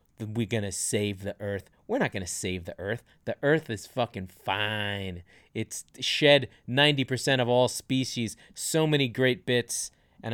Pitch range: 110-135 Hz